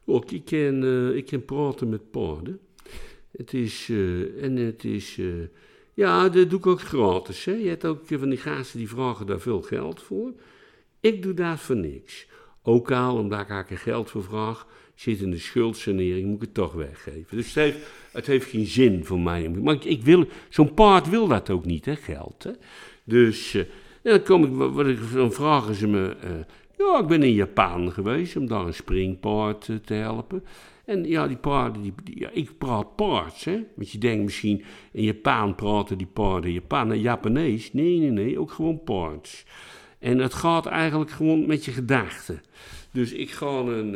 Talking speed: 195 wpm